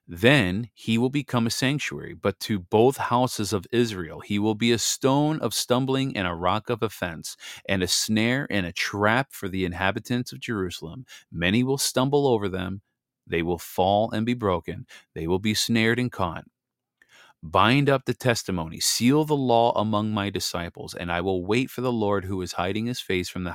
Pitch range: 95-125 Hz